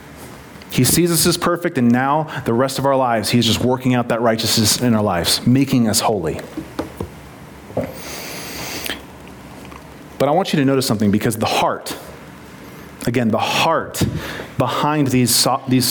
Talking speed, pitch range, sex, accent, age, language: 150 wpm, 115-145 Hz, male, American, 30-49, English